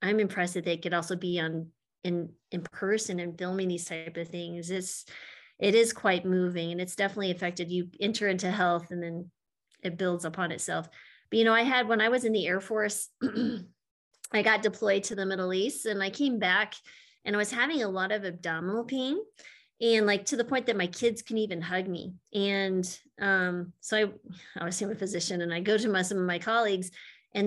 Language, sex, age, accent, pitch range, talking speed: English, female, 30-49, American, 180-225 Hz, 215 wpm